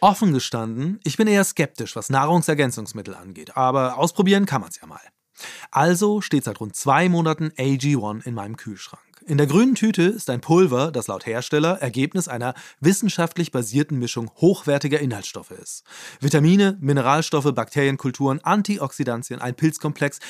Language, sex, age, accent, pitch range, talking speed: German, male, 30-49, German, 125-175 Hz, 150 wpm